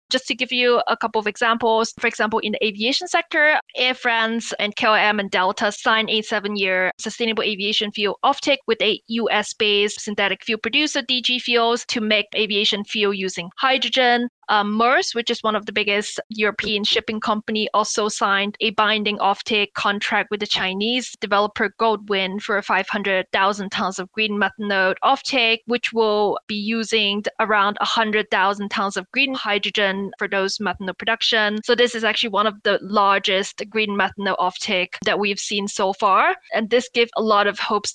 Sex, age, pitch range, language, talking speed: female, 20-39, 200-230 Hz, English, 170 wpm